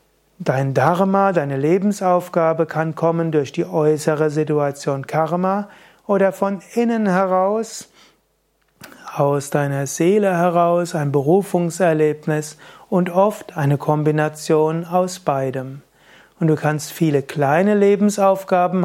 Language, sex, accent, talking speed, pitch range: German, male, German, 105 wpm, 150-185 Hz